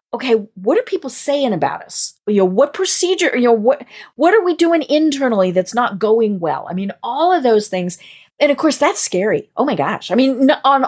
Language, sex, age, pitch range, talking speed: English, female, 40-59, 200-310 Hz, 220 wpm